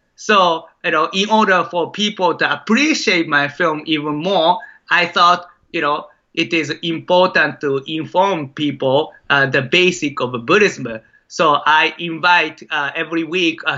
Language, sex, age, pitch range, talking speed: English, male, 30-49, 140-170 Hz, 150 wpm